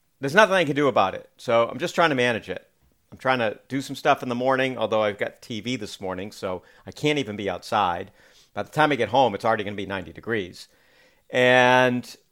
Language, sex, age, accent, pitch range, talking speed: English, male, 50-69, American, 110-150 Hz, 240 wpm